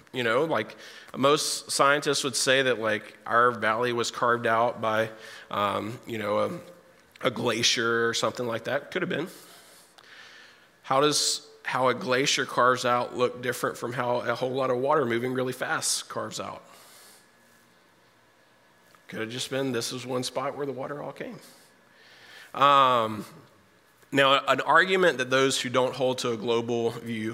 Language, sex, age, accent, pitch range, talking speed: English, male, 30-49, American, 115-135 Hz, 165 wpm